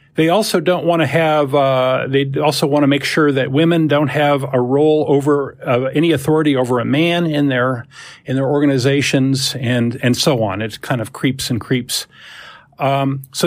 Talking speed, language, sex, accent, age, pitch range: 190 wpm, English, male, American, 50-69, 130-160 Hz